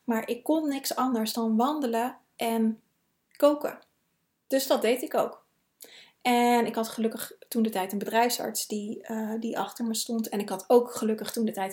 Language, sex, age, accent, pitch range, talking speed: Dutch, female, 20-39, Dutch, 210-245 Hz, 185 wpm